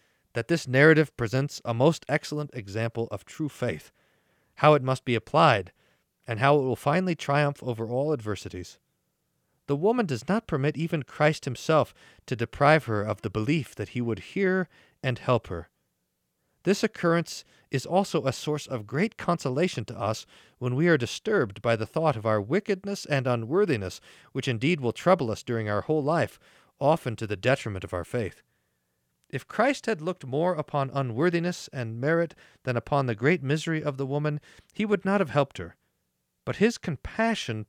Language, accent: English, American